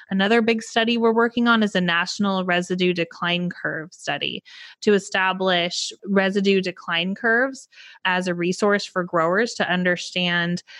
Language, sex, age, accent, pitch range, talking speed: English, female, 20-39, American, 175-205 Hz, 140 wpm